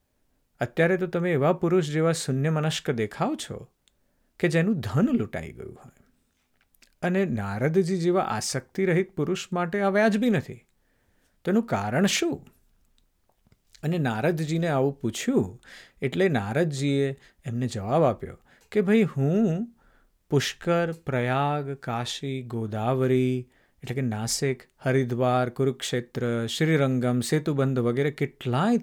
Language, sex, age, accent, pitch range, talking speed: Gujarati, male, 50-69, native, 125-180 Hz, 110 wpm